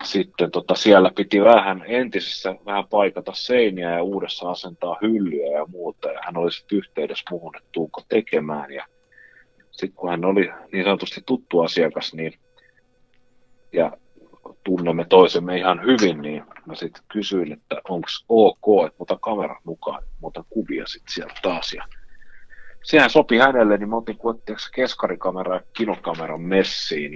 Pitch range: 85-120 Hz